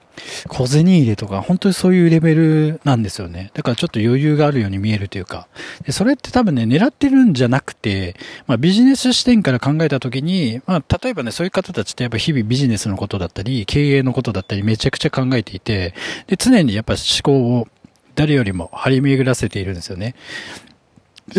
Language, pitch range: Japanese, 110-175 Hz